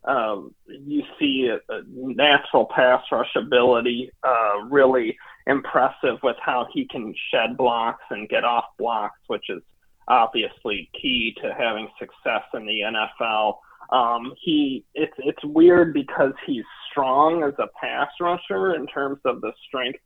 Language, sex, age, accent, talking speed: English, male, 30-49, American, 145 wpm